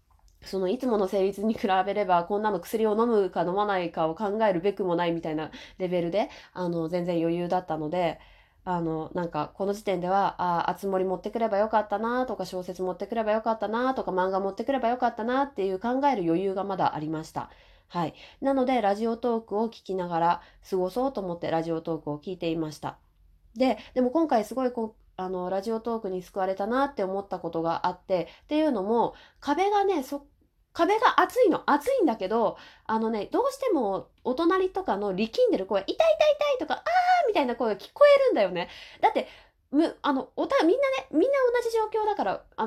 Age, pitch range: 20-39, 180-265 Hz